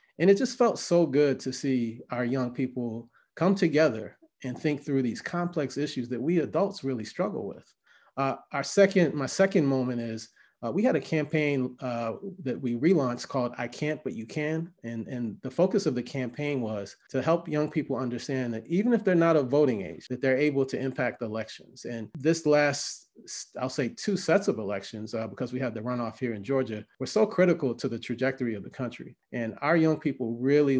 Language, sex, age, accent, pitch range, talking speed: English, male, 30-49, American, 120-145 Hz, 205 wpm